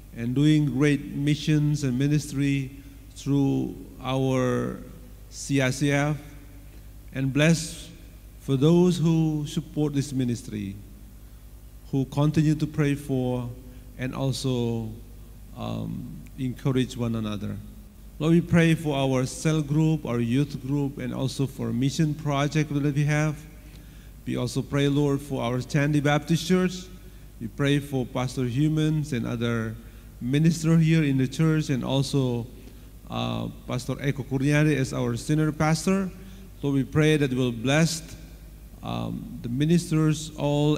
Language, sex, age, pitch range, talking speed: Indonesian, male, 50-69, 115-150 Hz, 130 wpm